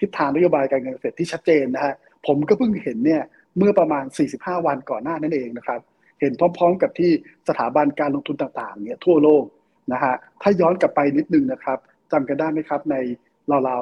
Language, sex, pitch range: Thai, male, 140-180 Hz